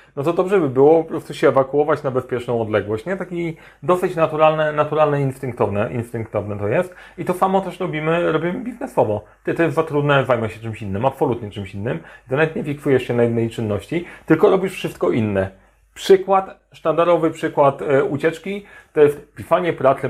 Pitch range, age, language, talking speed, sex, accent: 115-160 Hz, 30-49, Polish, 175 wpm, male, native